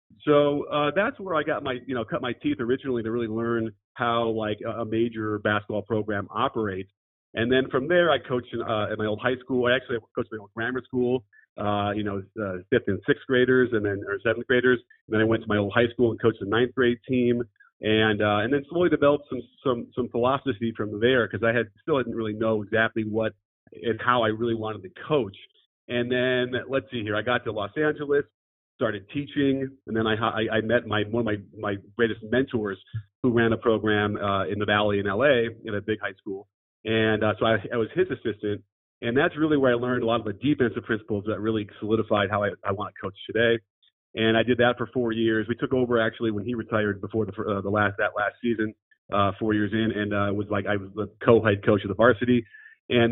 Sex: male